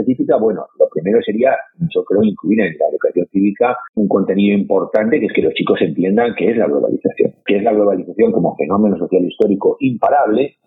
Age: 40-59